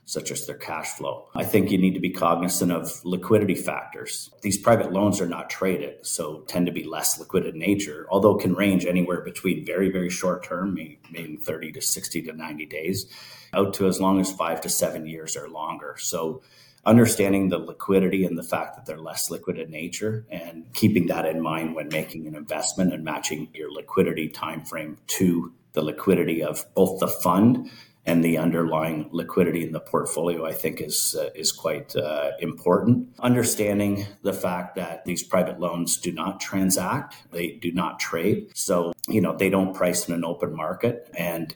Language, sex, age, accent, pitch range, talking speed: English, male, 40-59, American, 85-100 Hz, 190 wpm